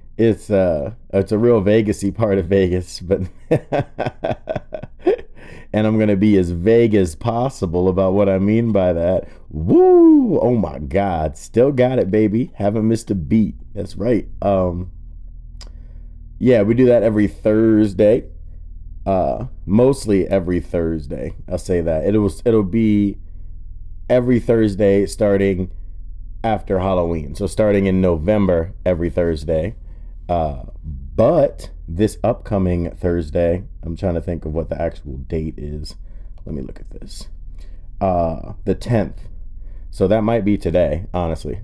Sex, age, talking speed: male, 30-49, 140 wpm